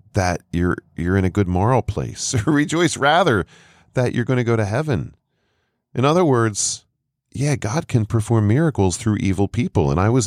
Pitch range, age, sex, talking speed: 80-110 Hz, 40-59, male, 185 wpm